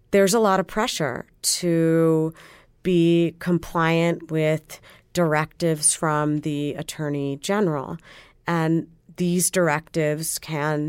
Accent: American